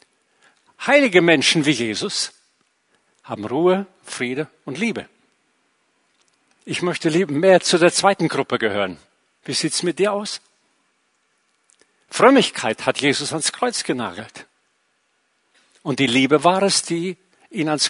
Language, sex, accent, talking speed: German, male, German, 125 wpm